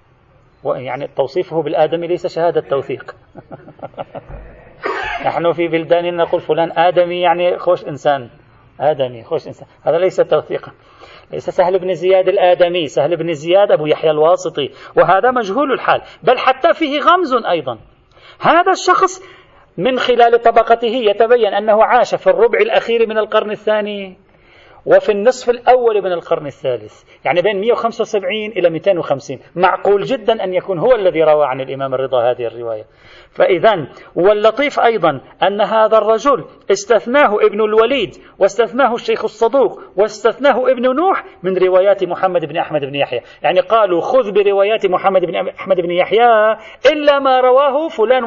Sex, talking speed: male, 140 wpm